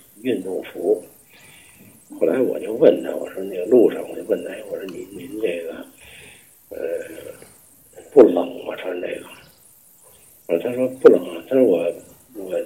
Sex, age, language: male, 60-79, Chinese